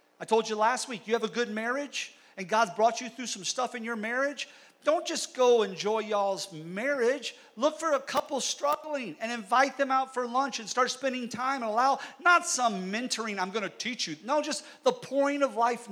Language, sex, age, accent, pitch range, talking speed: English, male, 50-69, American, 215-275 Hz, 215 wpm